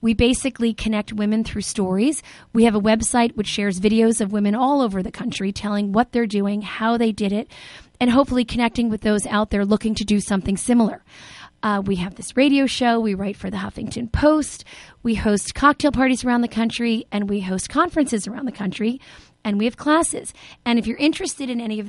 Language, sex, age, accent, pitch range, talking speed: English, female, 30-49, American, 210-250 Hz, 210 wpm